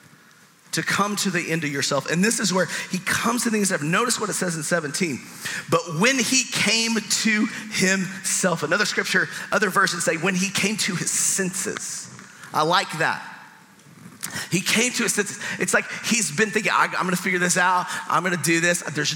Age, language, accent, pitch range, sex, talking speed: 40-59, English, American, 140-195 Hz, male, 195 wpm